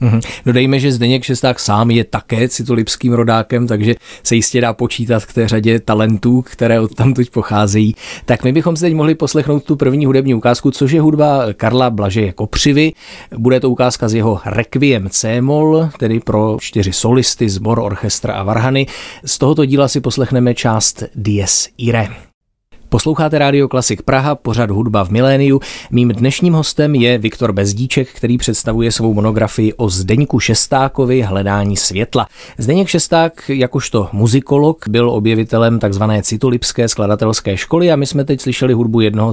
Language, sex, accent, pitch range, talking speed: Czech, male, native, 110-135 Hz, 160 wpm